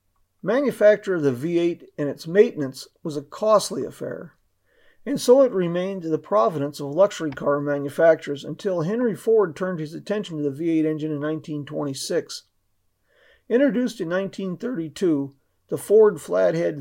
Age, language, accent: 40-59, English, American